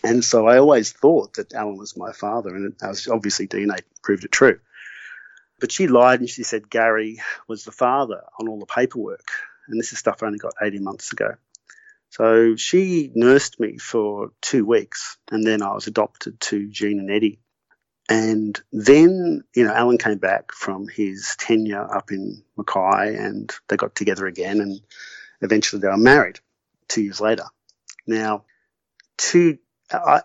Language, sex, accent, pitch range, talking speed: English, male, Australian, 105-115 Hz, 175 wpm